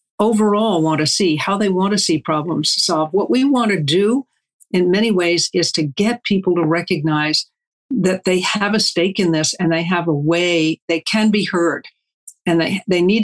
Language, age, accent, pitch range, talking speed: English, 60-79, American, 165-195 Hz, 205 wpm